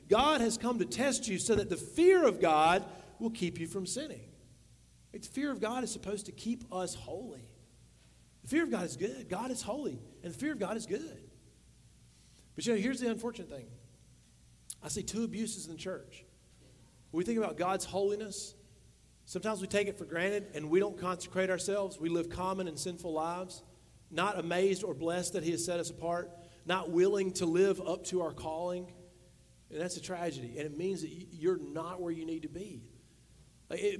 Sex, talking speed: male, 200 wpm